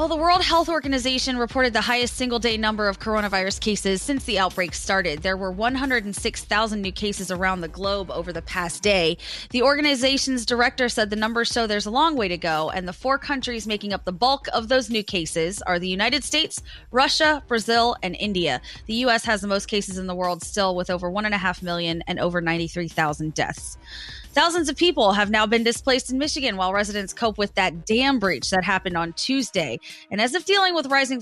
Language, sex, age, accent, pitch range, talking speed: English, female, 20-39, American, 180-250 Hz, 210 wpm